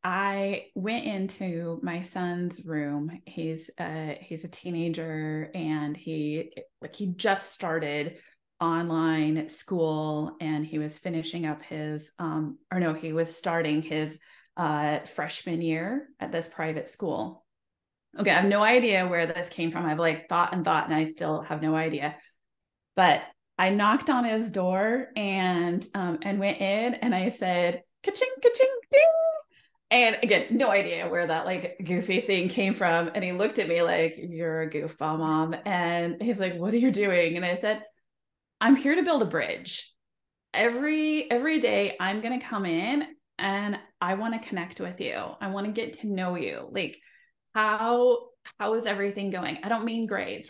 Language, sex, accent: English, female, American